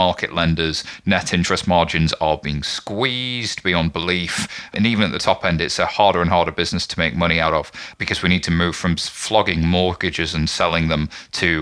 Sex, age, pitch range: male, 30-49, 80-105 Hz